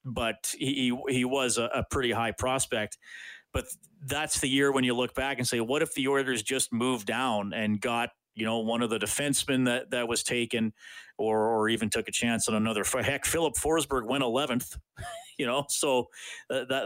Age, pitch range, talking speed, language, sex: 40-59, 115-140 Hz, 205 wpm, English, male